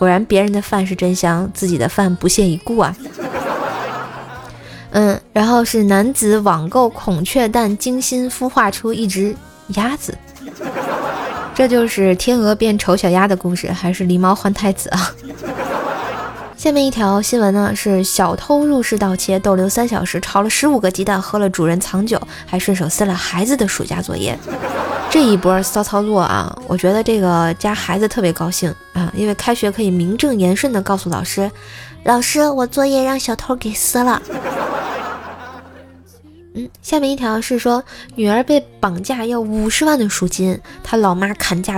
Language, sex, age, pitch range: Chinese, female, 20-39, 185-230 Hz